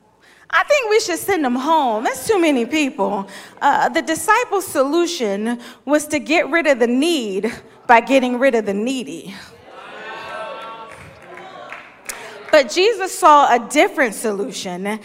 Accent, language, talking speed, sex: American, English, 135 wpm, female